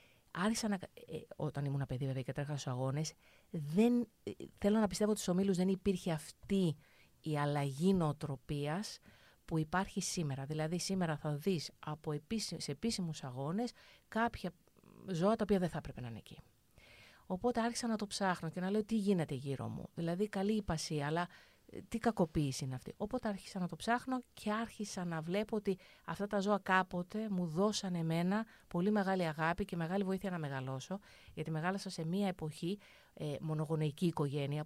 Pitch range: 145-200 Hz